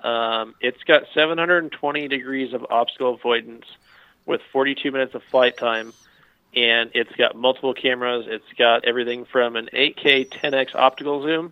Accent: American